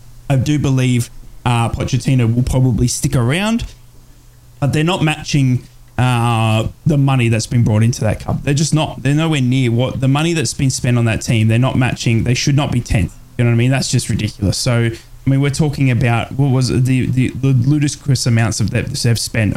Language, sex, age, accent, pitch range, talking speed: English, male, 20-39, Australian, 115-135 Hz, 215 wpm